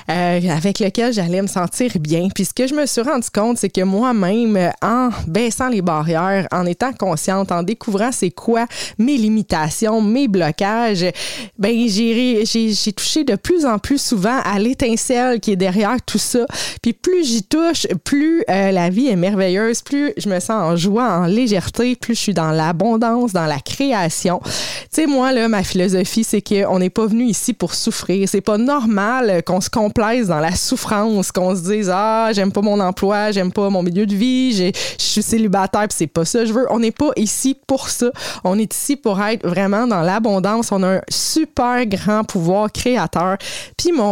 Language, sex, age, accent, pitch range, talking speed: French, female, 20-39, Canadian, 190-240 Hz, 195 wpm